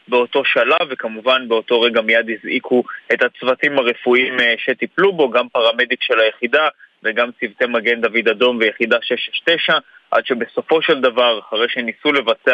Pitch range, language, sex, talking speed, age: 120-145 Hz, Hebrew, male, 145 wpm, 20-39